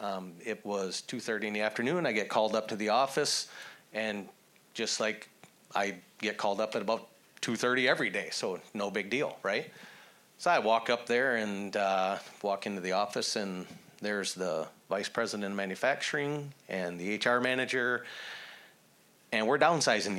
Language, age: English, 30-49